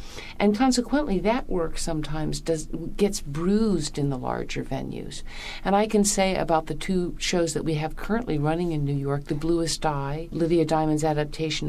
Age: 60-79